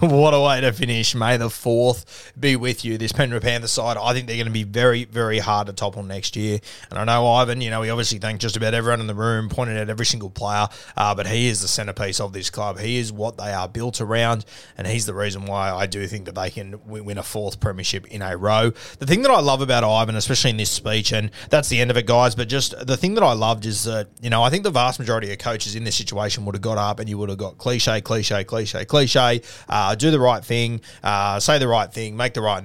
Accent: Australian